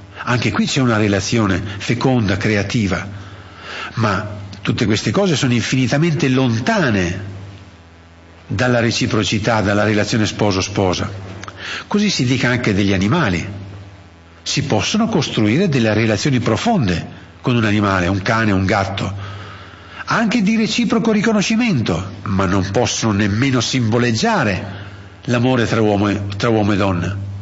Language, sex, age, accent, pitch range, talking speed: Italian, male, 50-69, native, 100-155 Hz, 115 wpm